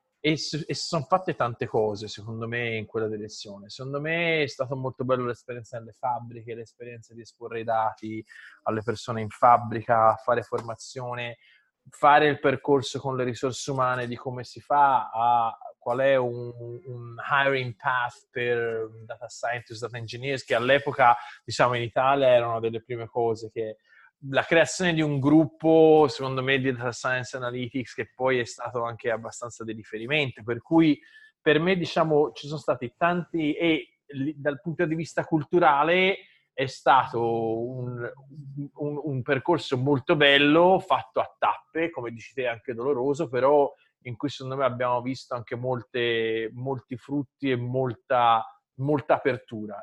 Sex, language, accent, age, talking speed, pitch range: male, Italian, native, 20-39, 155 wpm, 115-145 Hz